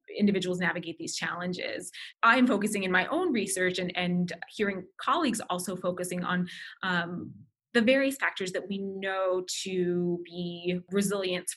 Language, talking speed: English, 145 wpm